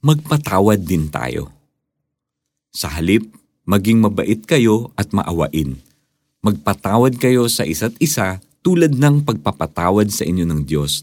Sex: male